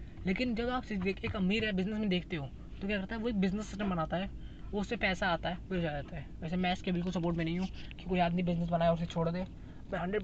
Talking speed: 275 wpm